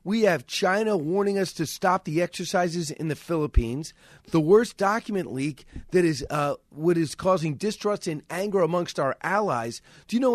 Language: English